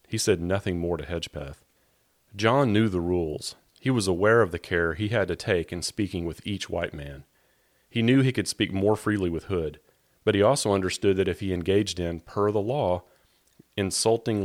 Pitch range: 90-115 Hz